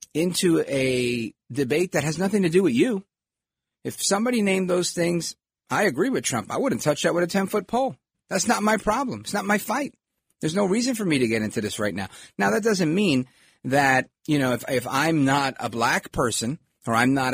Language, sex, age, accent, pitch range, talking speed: English, male, 40-59, American, 115-180 Hz, 220 wpm